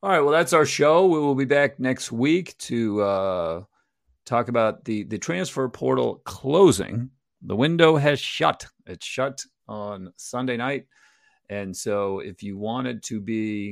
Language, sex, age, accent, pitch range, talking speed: English, male, 40-59, American, 100-130 Hz, 160 wpm